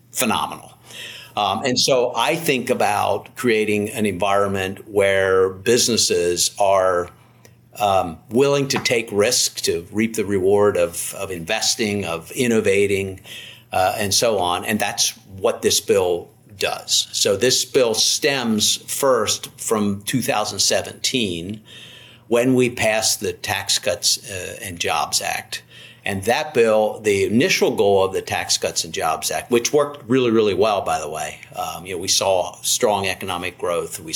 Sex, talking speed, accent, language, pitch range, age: male, 150 wpm, American, English, 100-130 Hz, 50-69